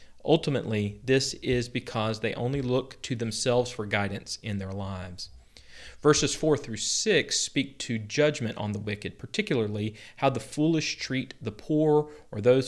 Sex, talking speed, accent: male, 150 wpm, American